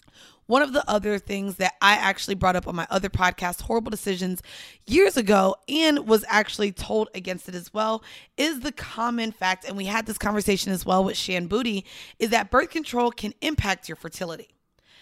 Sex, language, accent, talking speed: female, English, American, 190 wpm